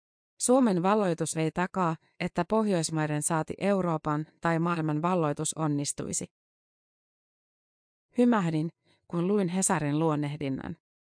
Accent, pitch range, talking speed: native, 155-185 Hz, 90 wpm